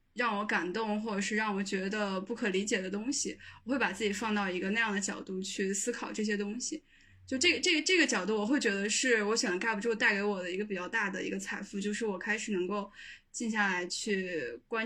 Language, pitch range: Chinese, 190-225 Hz